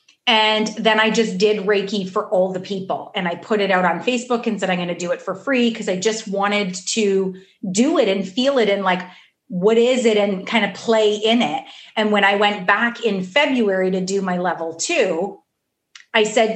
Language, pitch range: English, 195-245 Hz